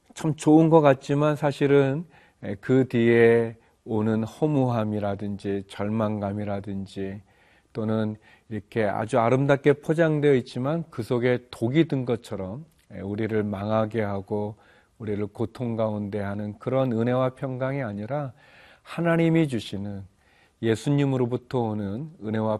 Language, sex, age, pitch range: Korean, male, 40-59, 105-135 Hz